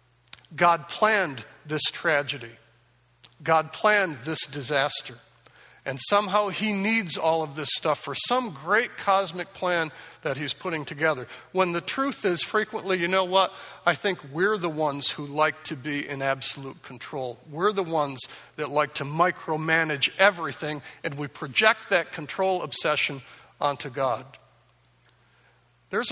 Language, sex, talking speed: English, male, 140 wpm